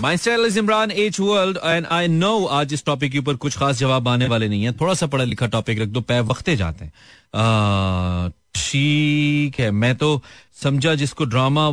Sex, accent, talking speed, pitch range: male, native, 145 wpm, 110-155 Hz